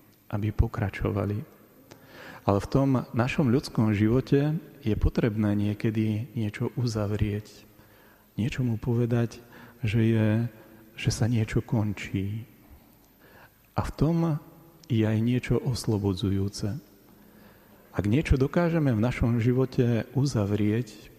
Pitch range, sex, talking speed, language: 105-125 Hz, male, 100 wpm, Slovak